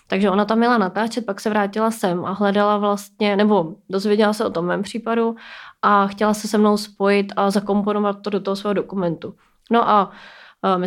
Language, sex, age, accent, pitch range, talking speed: Czech, female, 20-39, native, 190-215 Hz, 195 wpm